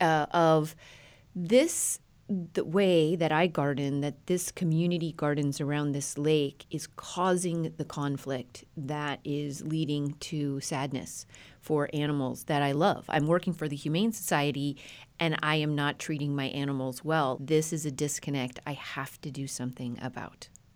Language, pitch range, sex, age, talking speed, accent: English, 140-185 Hz, female, 30-49, 155 wpm, American